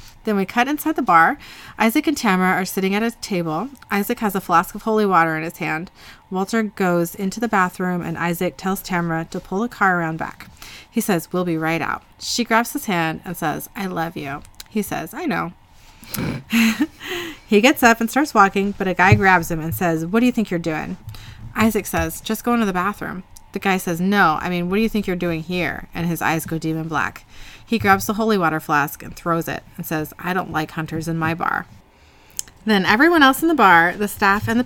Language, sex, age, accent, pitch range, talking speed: English, female, 30-49, American, 165-215 Hz, 230 wpm